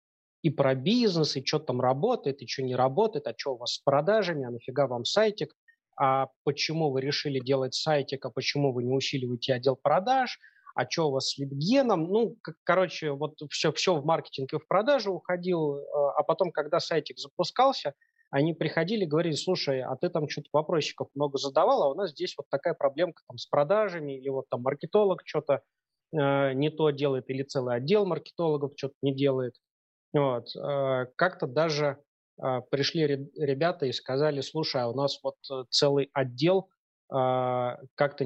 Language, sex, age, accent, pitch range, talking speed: Russian, male, 20-39, native, 135-160 Hz, 170 wpm